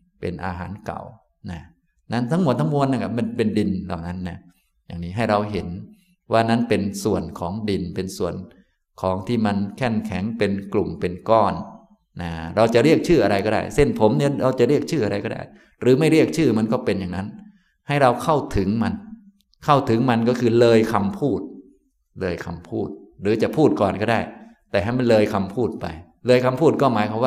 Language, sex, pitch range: Thai, male, 100-135 Hz